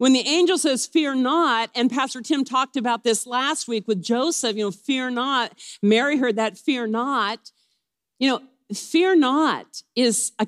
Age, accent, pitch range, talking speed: 50-69, American, 180-255 Hz, 180 wpm